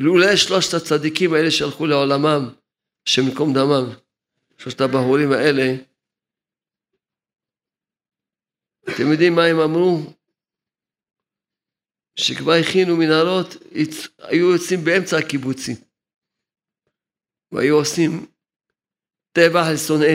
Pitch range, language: 140-170 Hz, Hebrew